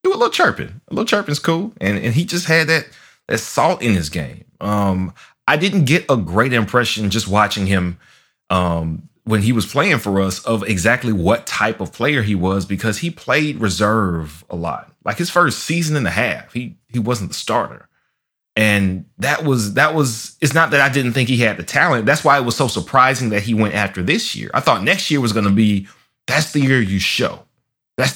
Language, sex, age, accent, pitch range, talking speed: English, male, 30-49, American, 105-150 Hz, 220 wpm